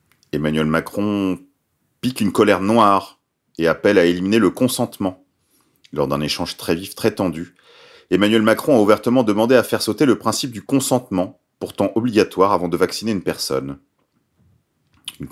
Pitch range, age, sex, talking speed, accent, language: 95-130 Hz, 40-59, male, 155 wpm, French, French